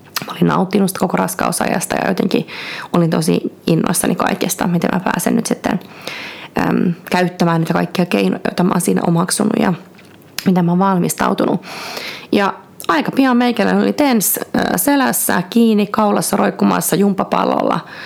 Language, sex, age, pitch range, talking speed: Finnish, female, 30-49, 170-225 Hz, 130 wpm